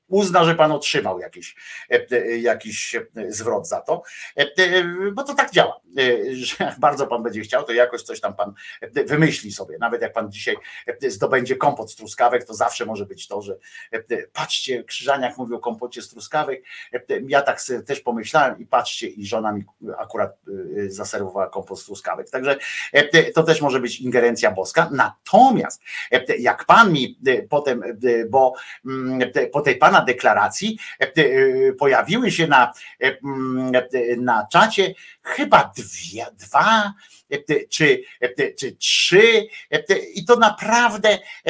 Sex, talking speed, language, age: male, 135 wpm, Polish, 50-69